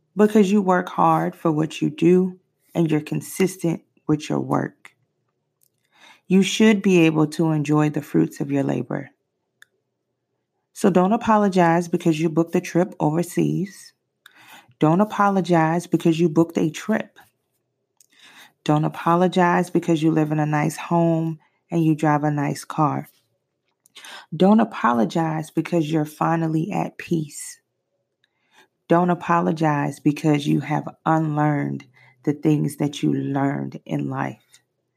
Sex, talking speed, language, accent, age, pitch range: female, 130 wpm, English, American, 30-49, 150-175 Hz